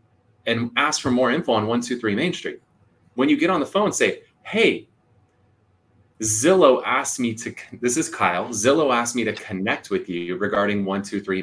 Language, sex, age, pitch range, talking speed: English, male, 30-49, 95-120 Hz, 175 wpm